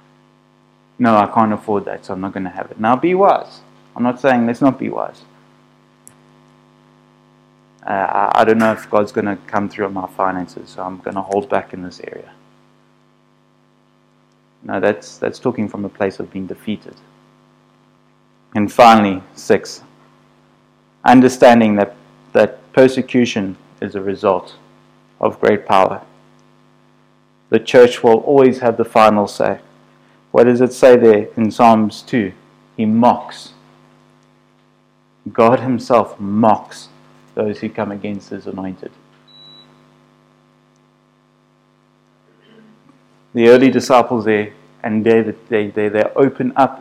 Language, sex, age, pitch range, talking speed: English, male, 20-39, 105-125 Hz, 135 wpm